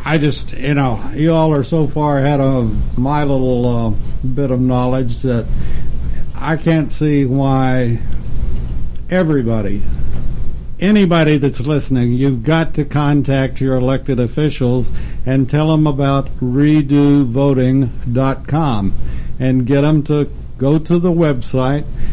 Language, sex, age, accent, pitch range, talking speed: English, male, 60-79, American, 115-150 Hz, 125 wpm